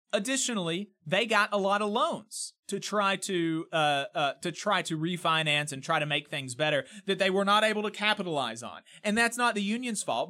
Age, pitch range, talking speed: 30-49, 150-215 Hz, 210 wpm